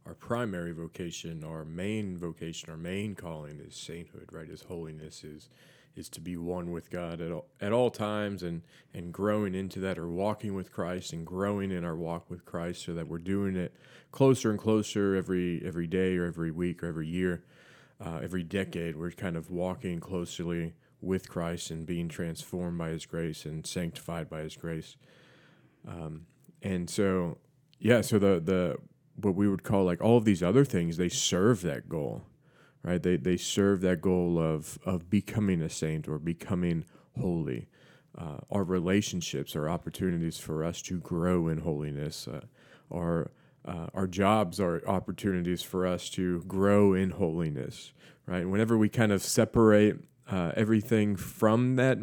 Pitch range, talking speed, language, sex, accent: 85-100 Hz, 170 wpm, English, male, American